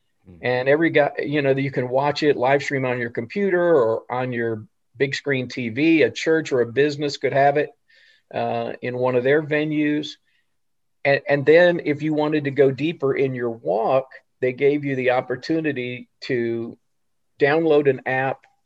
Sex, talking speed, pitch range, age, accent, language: male, 175 wpm, 120-145 Hz, 50-69, American, English